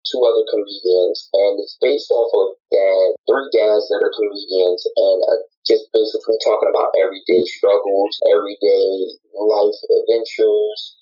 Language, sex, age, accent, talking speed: English, male, 20-39, American, 130 wpm